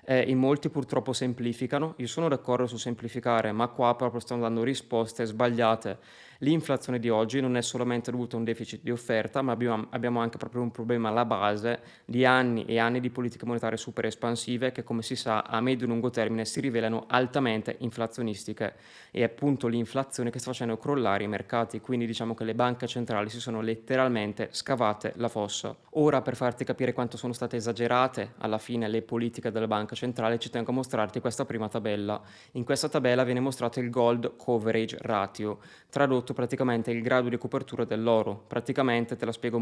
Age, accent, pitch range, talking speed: 20-39, native, 115-130 Hz, 185 wpm